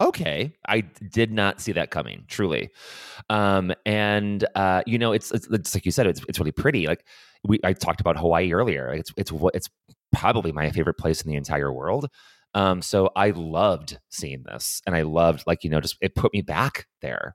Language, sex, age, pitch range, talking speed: English, male, 30-49, 80-115 Hz, 205 wpm